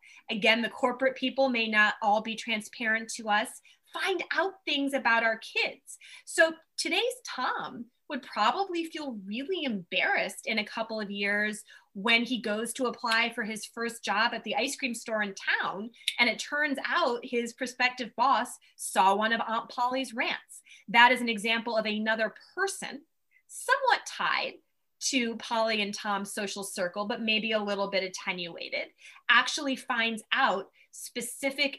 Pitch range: 210-265 Hz